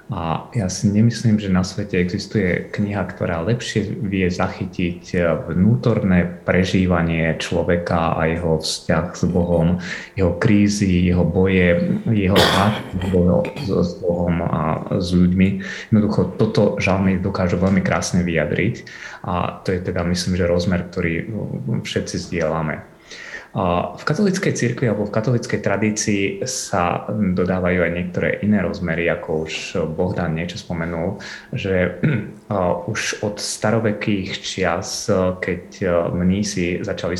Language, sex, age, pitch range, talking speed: Slovak, male, 20-39, 85-100 Hz, 120 wpm